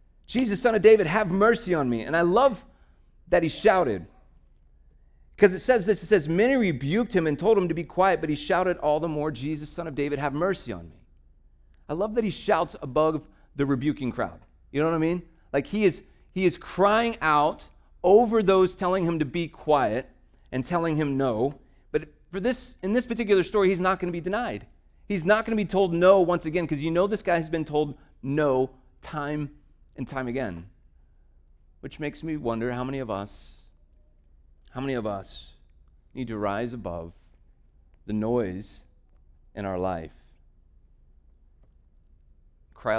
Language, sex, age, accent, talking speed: English, male, 30-49, American, 180 wpm